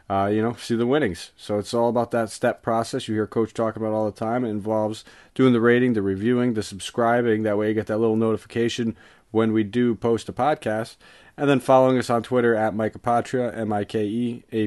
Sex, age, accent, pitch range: male, 30-49, American, 105-120 Hz